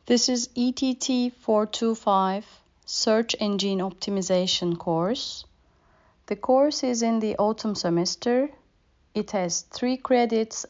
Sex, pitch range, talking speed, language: female, 175-220 Hz, 105 wpm, Turkish